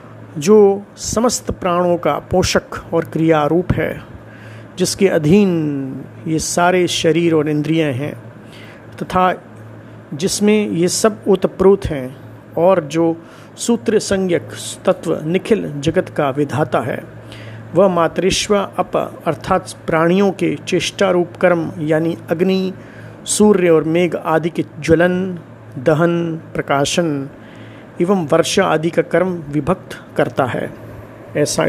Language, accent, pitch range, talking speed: Hindi, native, 140-190 Hz, 115 wpm